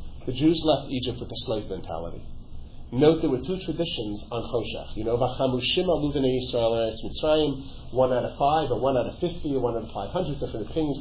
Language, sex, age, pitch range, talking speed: English, male, 40-59, 115-150 Hz, 180 wpm